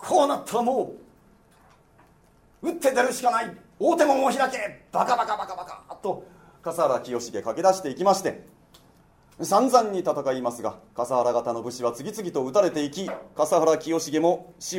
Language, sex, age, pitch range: Japanese, male, 40-59, 140-190 Hz